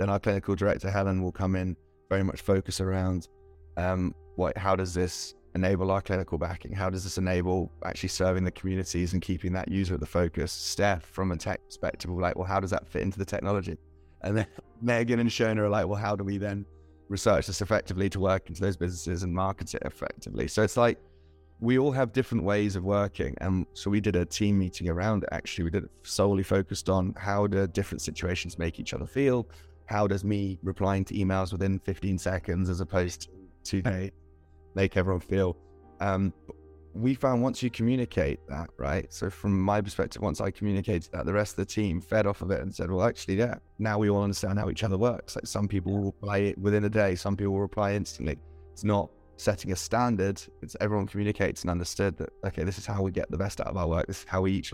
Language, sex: English, male